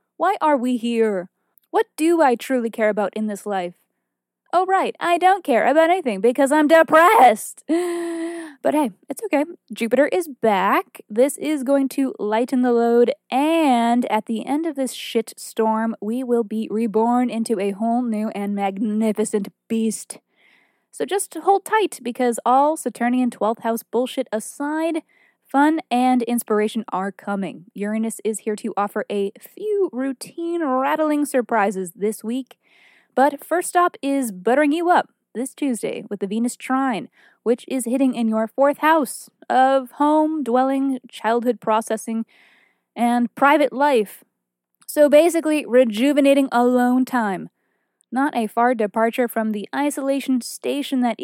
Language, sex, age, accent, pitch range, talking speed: English, female, 20-39, American, 220-290 Hz, 150 wpm